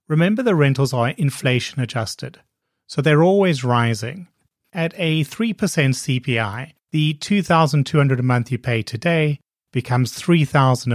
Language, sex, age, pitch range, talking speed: English, male, 30-49, 120-155 Hz, 120 wpm